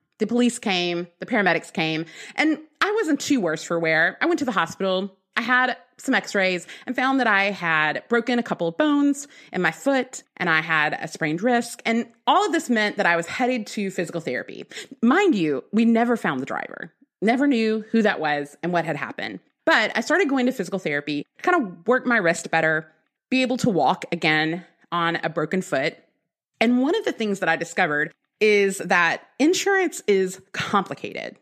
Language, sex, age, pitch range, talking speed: English, female, 30-49, 170-255 Hz, 200 wpm